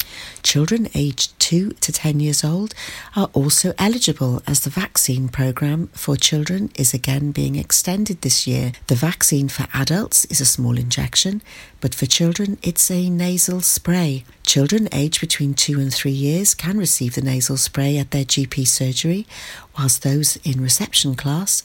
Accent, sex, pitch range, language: British, female, 135-180 Hz, Japanese